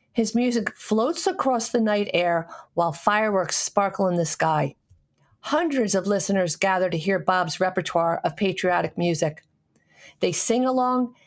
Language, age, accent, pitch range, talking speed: English, 50-69, American, 175-225 Hz, 145 wpm